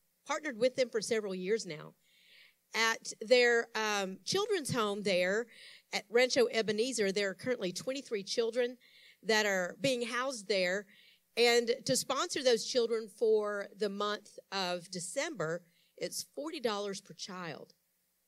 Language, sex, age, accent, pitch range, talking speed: English, female, 50-69, American, 190-235 Hz, 130 wpm